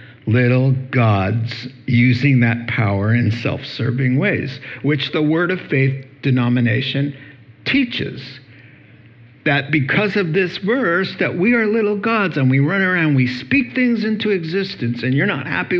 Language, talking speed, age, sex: English, 145 wpm, 60-79, male